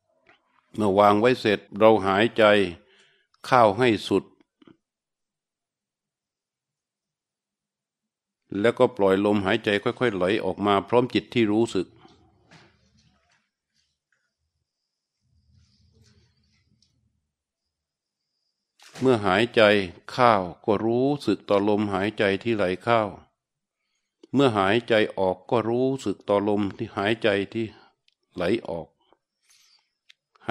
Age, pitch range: 60-79, 100-115 Hz